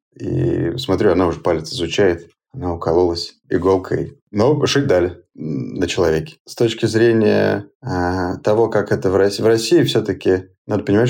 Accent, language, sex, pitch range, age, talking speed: native, Russian, male, 85-110 Hz, 20-39, 150 wpm